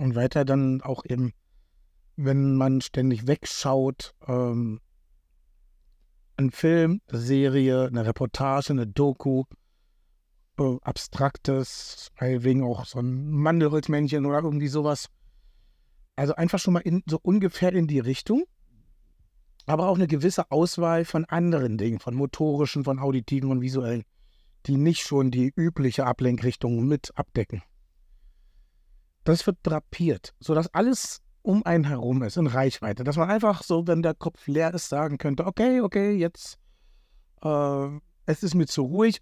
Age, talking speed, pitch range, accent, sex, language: 60-79, 140 wpm, 120-165 Hz, German, male, German